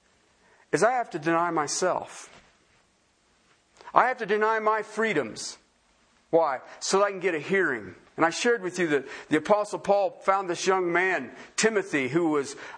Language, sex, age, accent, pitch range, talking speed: English, male, 50-69, American, 140-215 Hz, 170 wpm